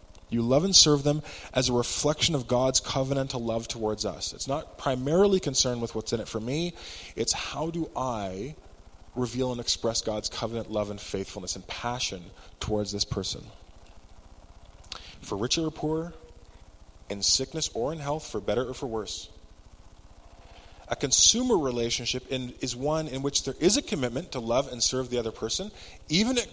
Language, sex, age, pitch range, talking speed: English, male, 20-39, 100-140 Hz, 175 wpm